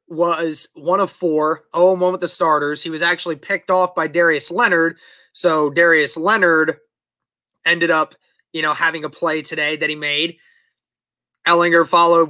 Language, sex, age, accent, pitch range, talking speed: English, male, 20-39, American, 145-170 Hz, 165 wpm